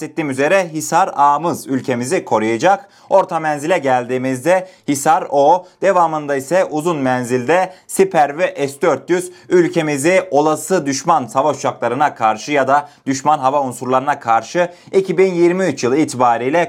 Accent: native